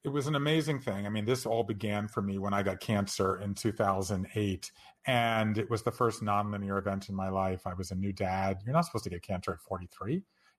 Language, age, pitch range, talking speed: English, 40-59, 110-155 Hz, 230 wpm